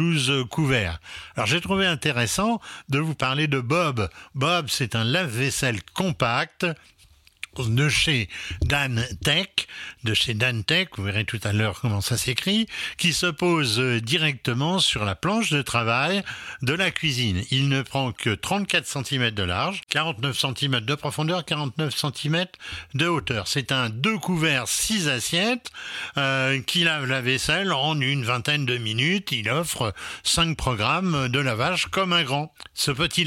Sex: male